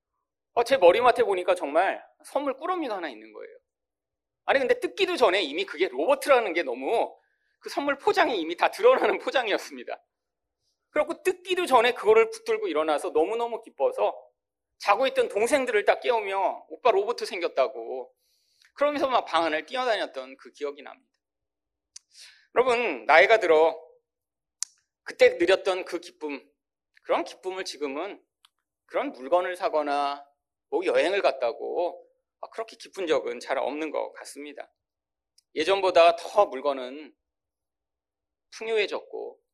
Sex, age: male, 40-59